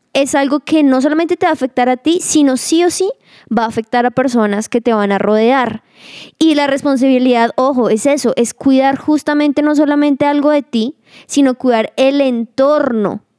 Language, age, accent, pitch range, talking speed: Spanish, 20-39, Colombian, 230-280 Hz, 195 wpm